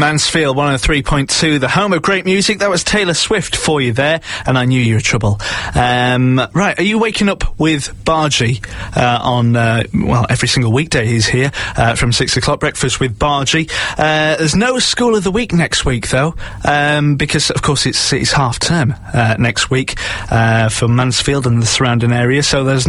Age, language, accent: 30-49, English, British